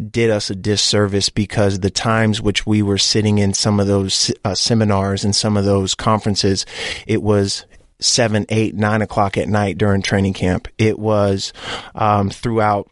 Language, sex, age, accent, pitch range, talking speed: English, male, 30-49, American, 100-110 Hz, 170 wpm